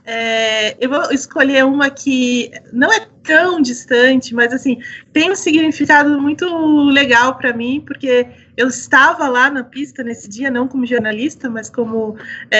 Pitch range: 245-310 Hz